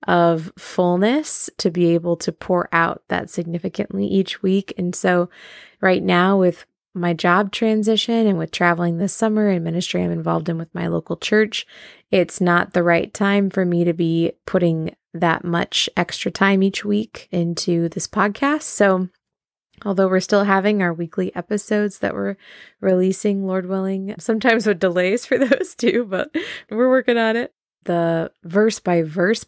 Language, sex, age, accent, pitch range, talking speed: English, female, 20-39, American, 175-200 Hz, 165 wpm